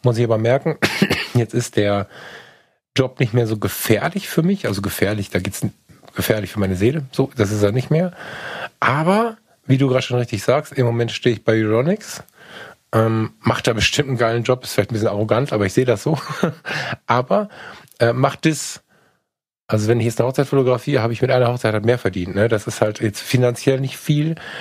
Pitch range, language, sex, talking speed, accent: 110-135 Hz, German, male, 210 wpm, German